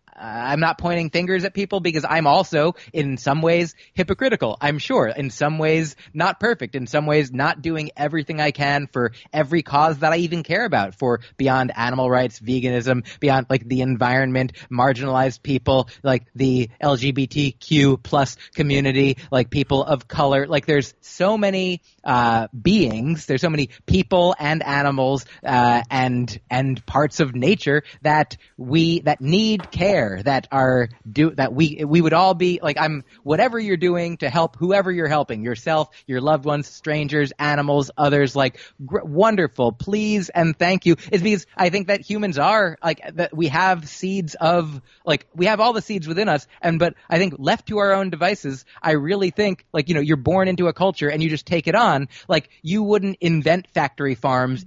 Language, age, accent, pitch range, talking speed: English, 30-49, American, 135-175 Hz, 180 wpm